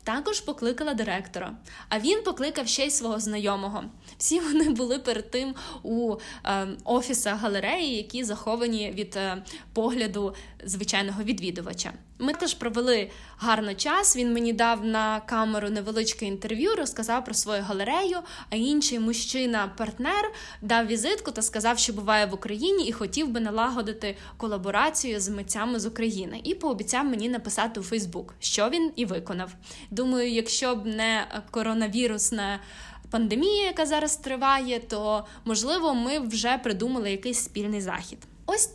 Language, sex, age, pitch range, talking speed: Ukrainian, female, 10-29, 215-285 Hz, 140 wpm